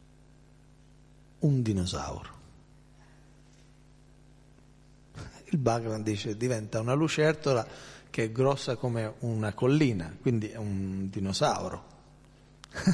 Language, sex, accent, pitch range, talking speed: Italian, male, native, 125-145 Hz, 85 wpm